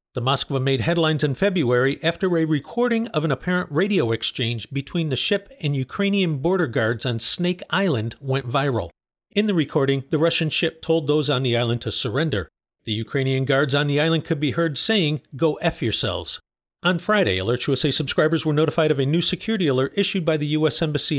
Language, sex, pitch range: English, male, 130-170 Hz